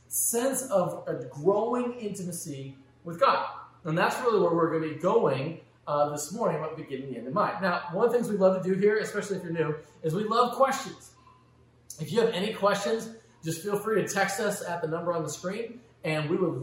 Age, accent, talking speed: 30-49, American, 240 wpm